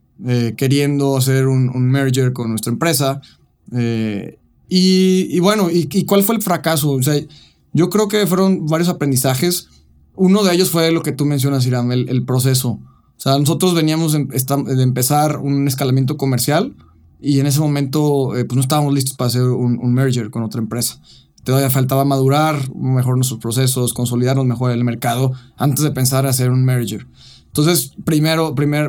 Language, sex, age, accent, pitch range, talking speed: Spanish, male, 20-39, Mexican, 125-155 Hz, 180 wpm